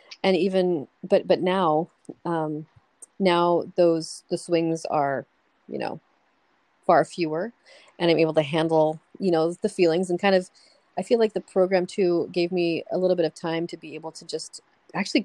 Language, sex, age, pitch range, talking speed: English, female, 30-49, 160-185 Hz, 180 wpm